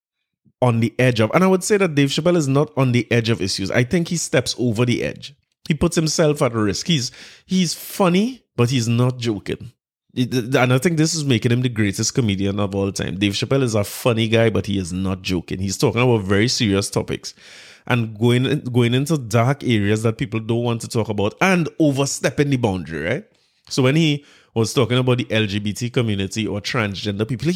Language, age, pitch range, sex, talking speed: English, 20-39, 105-135 Hz, male, 210 wpm